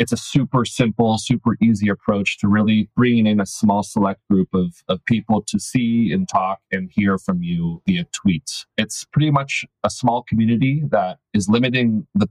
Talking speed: 185 wpm